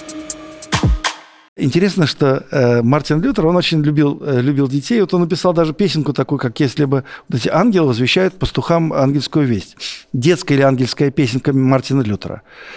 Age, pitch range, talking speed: 60-79, 125-170 Hz, 155 wpm